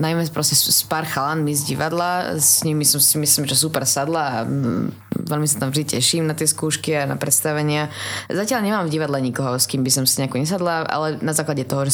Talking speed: 215 wpm